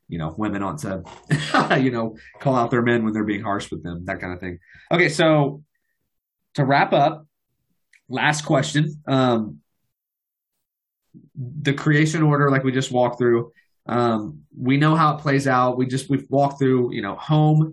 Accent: American